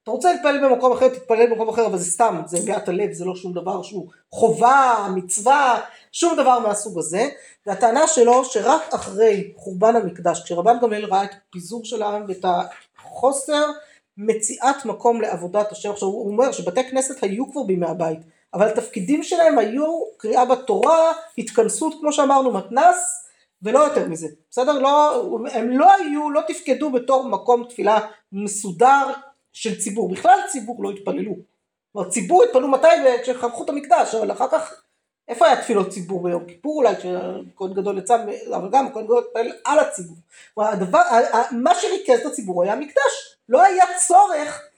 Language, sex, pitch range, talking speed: Hebrew, female, 205-285 Hz, 150 wpm